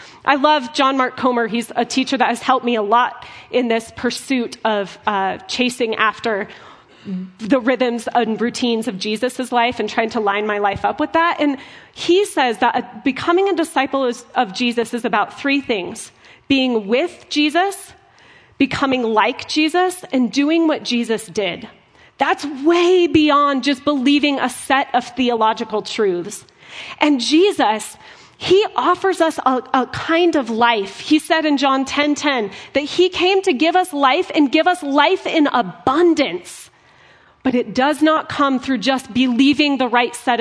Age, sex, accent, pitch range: 30-49, female, American, 235-305 Hz